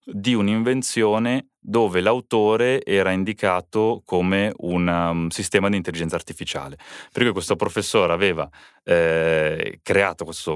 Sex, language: male, Italian